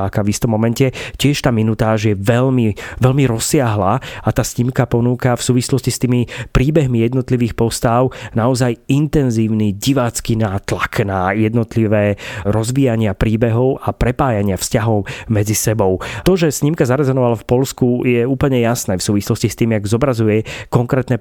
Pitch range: 105-125 Hz